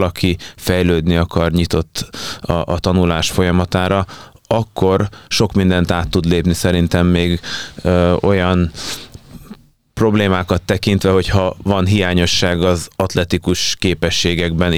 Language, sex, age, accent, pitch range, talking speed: English, male, 20-39, Finnish, 85-95 Hz, 105 wpm